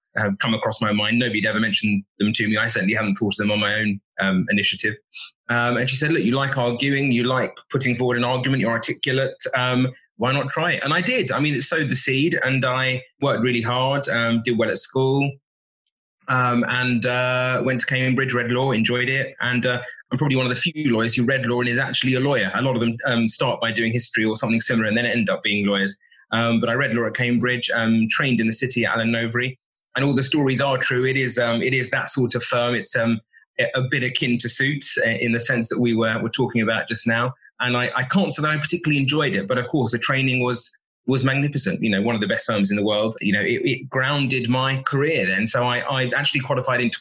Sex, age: male, 20-39